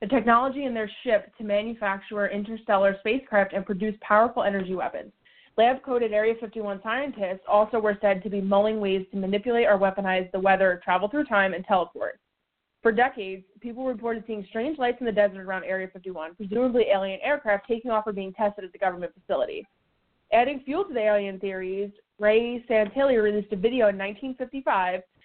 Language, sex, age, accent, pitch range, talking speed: English, female, 20-39, American, 195-230 Hz, 175 wpm